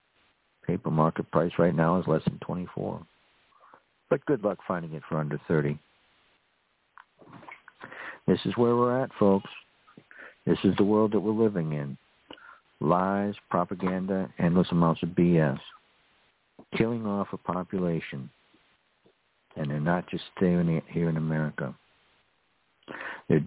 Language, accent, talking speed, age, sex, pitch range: English, American, 130 wpm, 60-79, male, 85-110 Hz